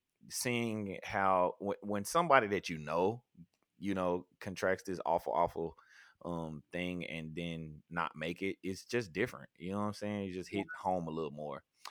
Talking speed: 175 wpm